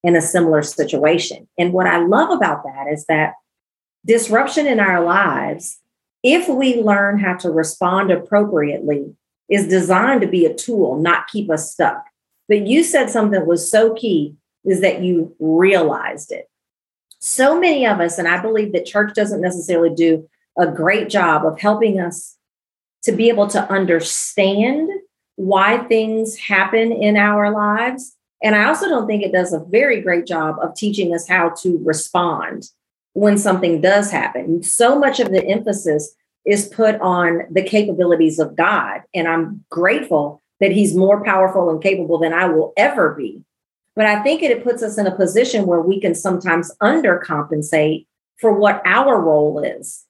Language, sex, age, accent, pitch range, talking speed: English, female, 40-59, American, 170-215 Hz, 170 wpm